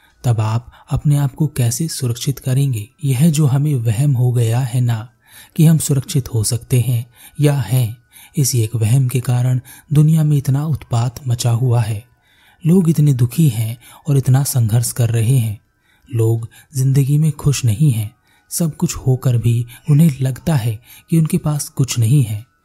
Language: Hindi